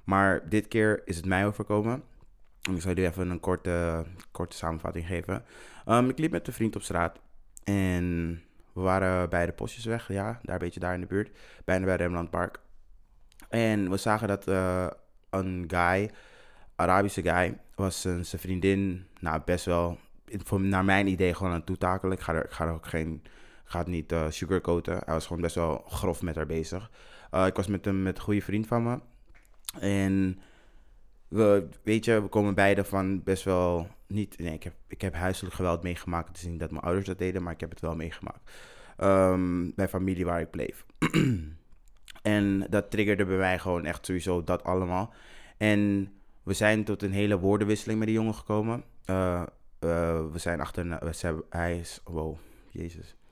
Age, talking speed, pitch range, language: 20-39, 190 wpm, 85-100 Hz, Dutch